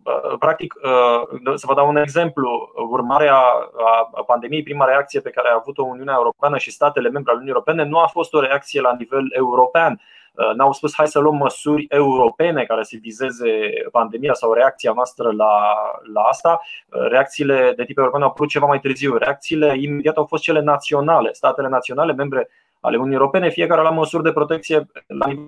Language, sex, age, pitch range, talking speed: Romanian, male, 20-39, 130-155 Hz, 175 wpm